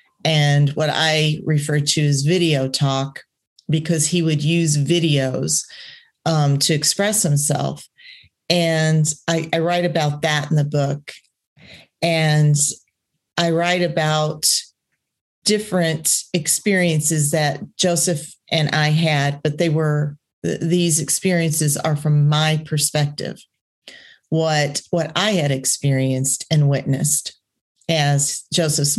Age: 40-59